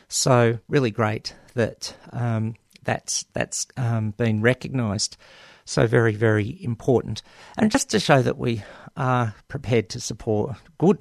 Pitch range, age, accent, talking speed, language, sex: 105-120 Hz, 50-69, Australian, 135 wpm, English, male